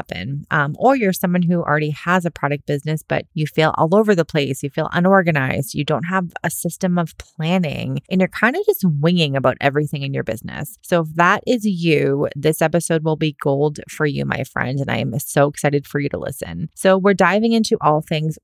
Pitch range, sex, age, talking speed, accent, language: 150-185 Hz, female, 20-39, 220 wpm, American, English